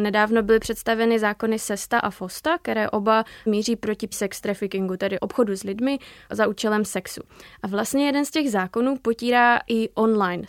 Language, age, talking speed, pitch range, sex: Czech, 20-39, 165 wpm, 210-235 Hz, female